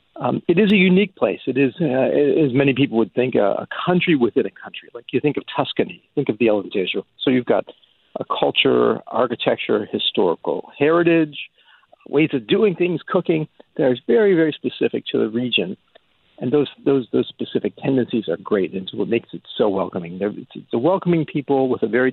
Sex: male